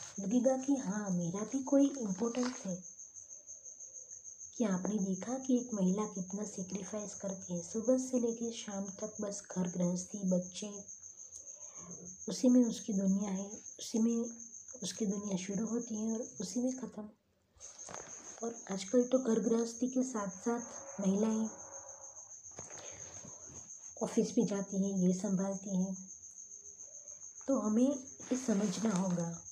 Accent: native